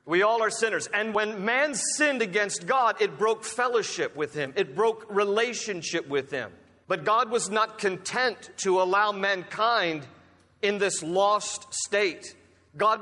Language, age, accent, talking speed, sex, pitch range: English, 40-59, American, 150 wpm, male, 195-235 Hz